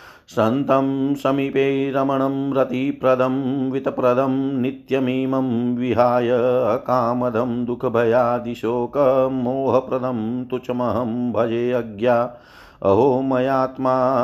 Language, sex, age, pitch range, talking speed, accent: Hindi, male, 50-69, 115-130 Hz, 60 wpm, native